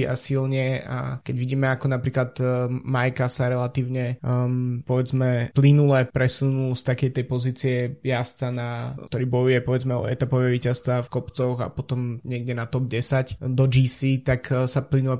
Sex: male